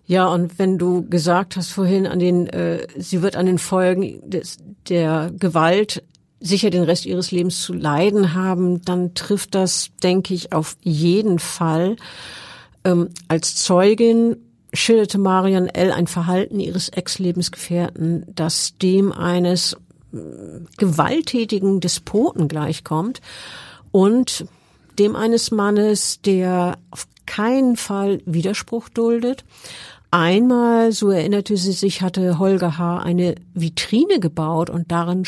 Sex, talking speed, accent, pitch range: female, 120 wpm, German, 170-200 Hz